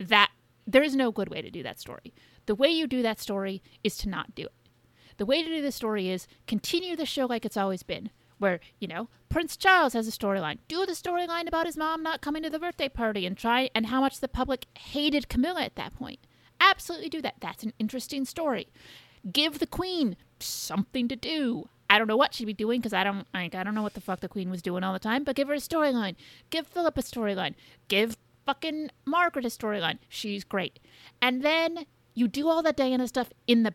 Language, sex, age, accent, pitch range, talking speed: English, female, 30-49, American, 205-285 Hz, 230 wpm